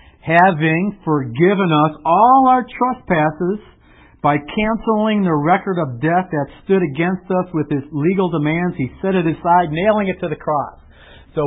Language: English